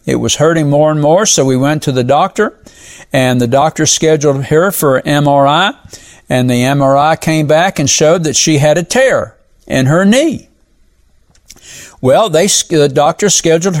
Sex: male